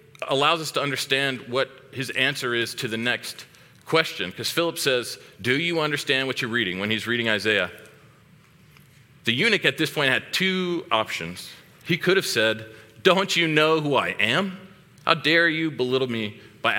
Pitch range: 120-150 Hz